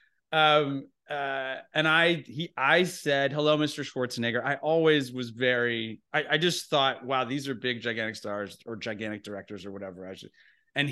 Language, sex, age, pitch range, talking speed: English, male, 30-49, 120-175 Hz, 175 wpm